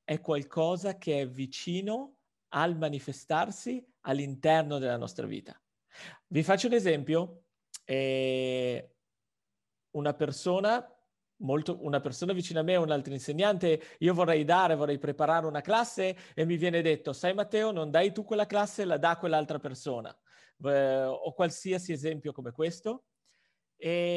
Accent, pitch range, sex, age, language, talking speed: native, 150-190 Hz, male, 40-59, Italian, 135 wpm